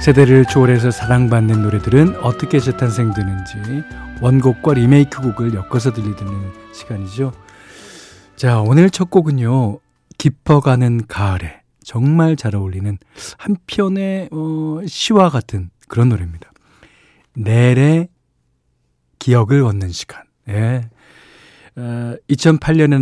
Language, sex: Korean, male